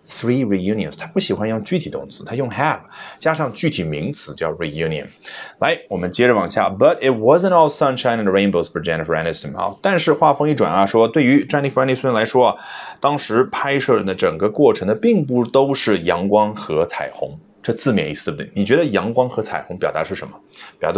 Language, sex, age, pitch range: Chinese, male, 30-49, 100-145 Hz